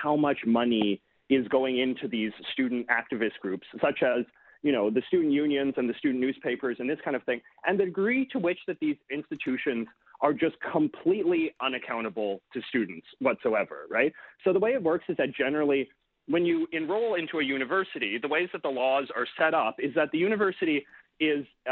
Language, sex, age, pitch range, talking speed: English, male, 30-49, 130-170 Hz, 190 wpm